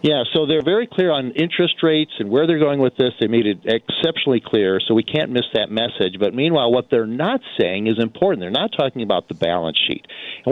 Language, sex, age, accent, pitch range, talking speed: English, male, 50-69, American, 110-155 Hz, 235 wpm